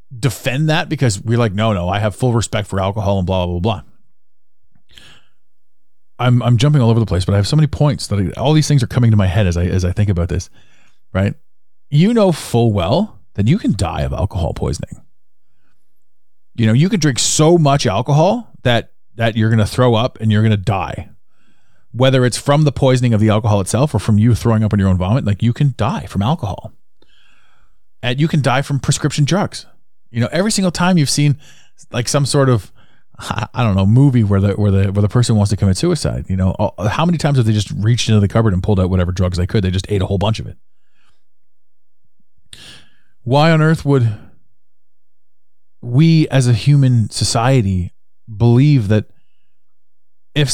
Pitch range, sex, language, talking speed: 95-135 Hz, male, English, 210 wpm